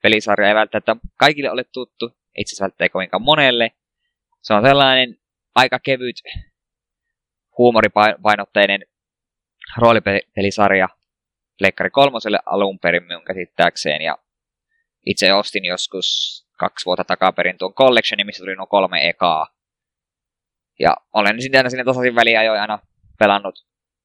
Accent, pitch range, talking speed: native, 100-125 Hz, 115 wpm